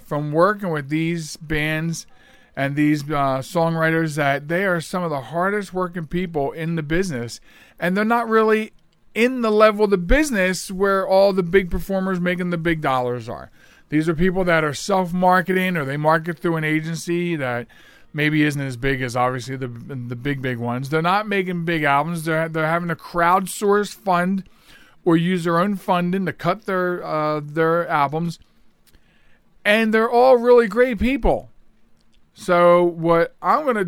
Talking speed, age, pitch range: 175 wpm, 40-59, 135-185 Hz